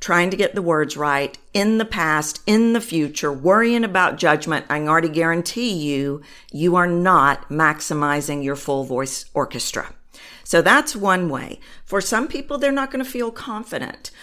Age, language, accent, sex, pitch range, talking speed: 50-69, English, American, female, 160-245 Hz, 170 wpm